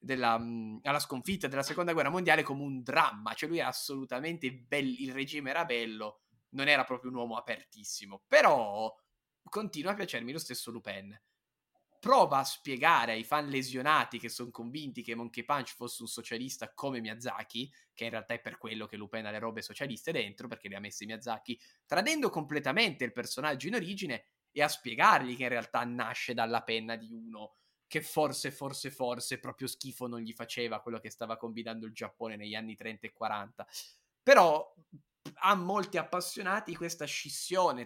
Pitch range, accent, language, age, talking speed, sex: 115-155 Hz, native, Italian, 20-39, 170 wpm, male